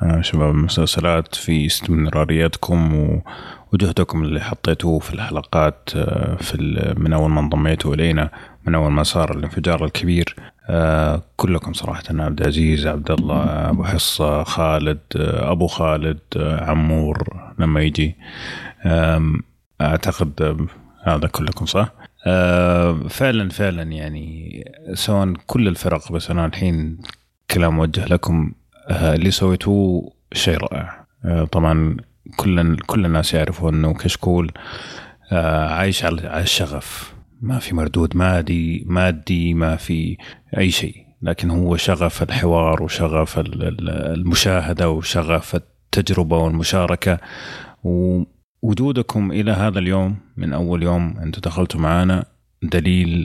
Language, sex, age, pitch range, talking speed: Arabic, male, 30-49, 80-90 Hz, 105 wpm